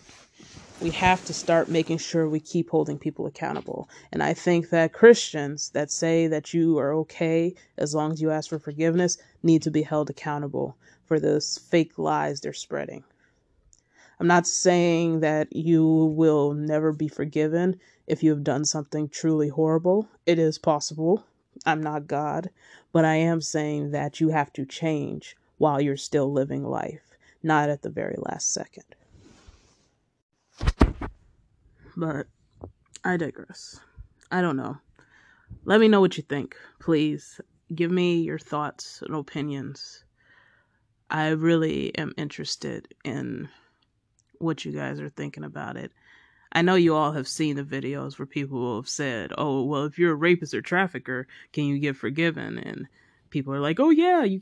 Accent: American